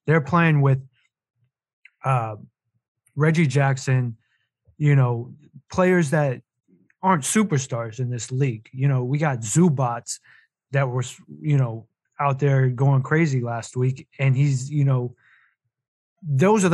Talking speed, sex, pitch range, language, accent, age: 130 wpm, male, 130-155 Hz, English, American, 20-39